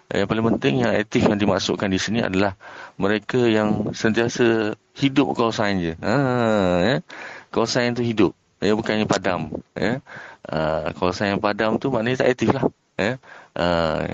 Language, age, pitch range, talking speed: Malay, 20-39, 90-105 Hz, 180 wpm